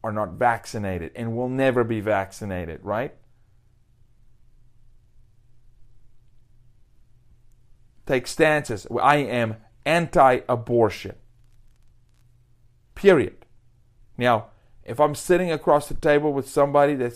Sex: male